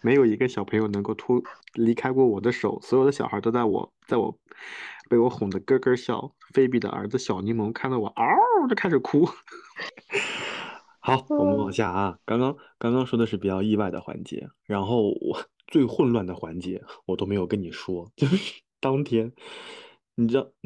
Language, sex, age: Chinese, male, 20-39